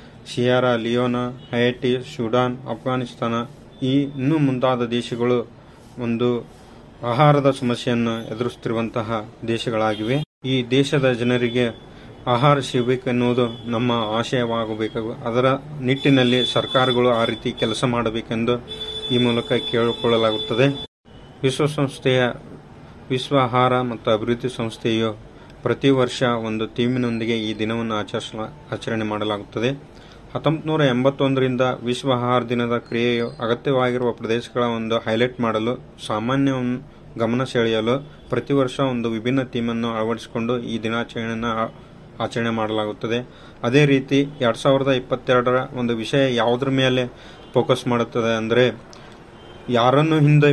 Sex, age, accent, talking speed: male, 30-49, native, 100 wpm